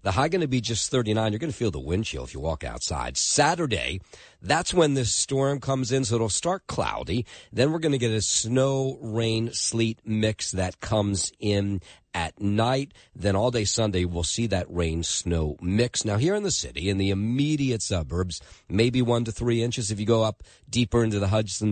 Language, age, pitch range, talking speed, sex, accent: English, 40-59, 90-125 Hz, 210 wpm, male, American